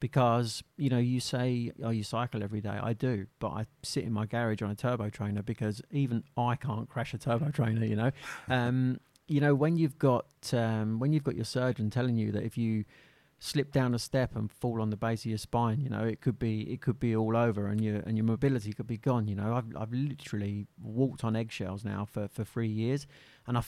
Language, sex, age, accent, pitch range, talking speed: English, male, 40-59, British, 110-135 Hz, 240 wpm